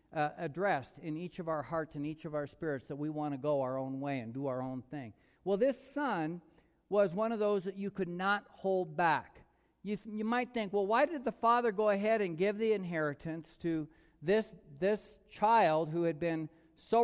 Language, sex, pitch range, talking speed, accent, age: English, male, 160-215 Hz, 220 wpm, American, 50-69